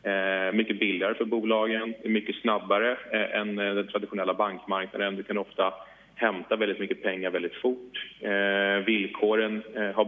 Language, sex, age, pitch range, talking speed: English, male, 30-49, 95-110 Hz, 125 wpm